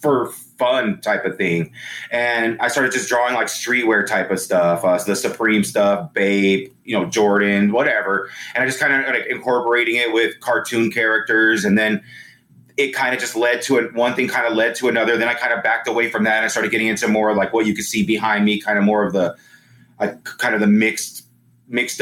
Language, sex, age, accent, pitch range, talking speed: English, male, 30-49, American, 100-120 Hz, 230 wpm